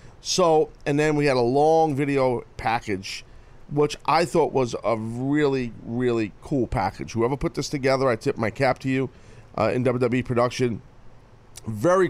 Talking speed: 165 wpm